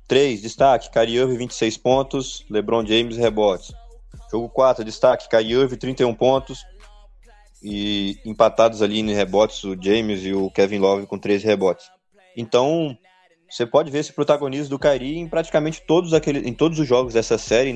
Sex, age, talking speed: male, 20-39, 160 wpm